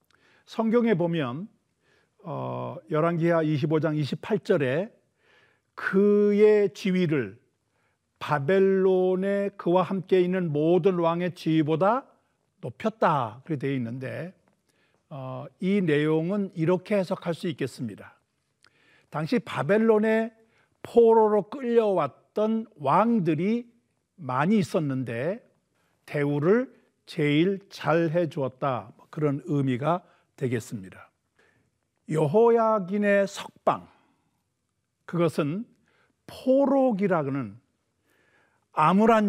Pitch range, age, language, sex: 145-205 Hz, 50-69, Korean, male